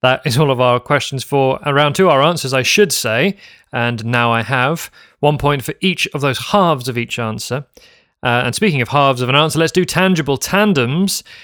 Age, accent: 30-49, British